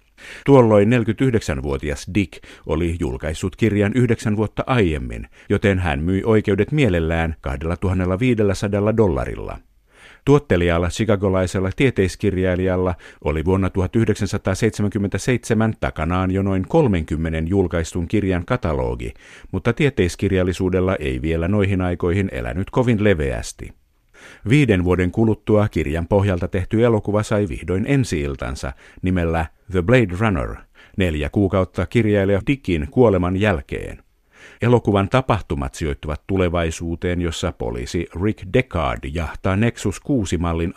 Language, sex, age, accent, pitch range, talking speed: Finnish, male, 50-69, native, 85-110 Hz, 100 wpm